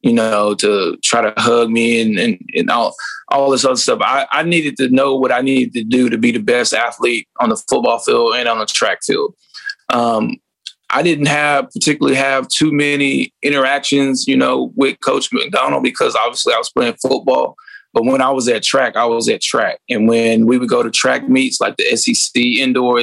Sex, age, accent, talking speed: male, 20-39, American, 210 wpm